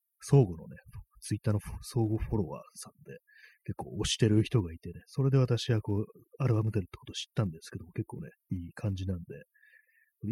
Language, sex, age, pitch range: Japanese, male, 30-49, 95-135 Hz